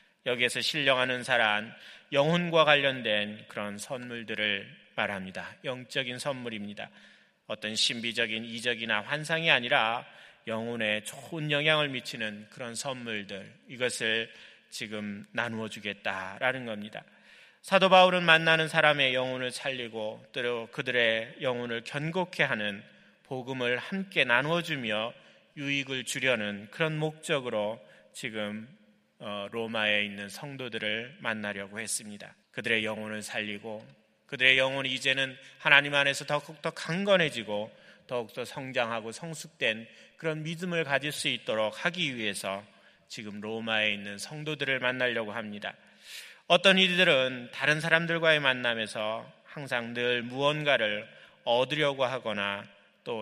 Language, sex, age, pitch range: Korean, male, 30-49, 110-145 Hz